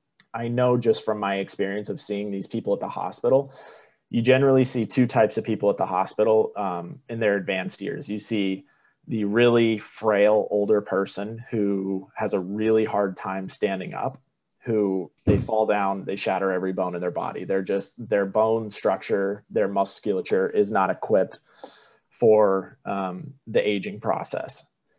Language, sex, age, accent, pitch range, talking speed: English, male, 30-49, American, 95-115 Hz, 165 wpm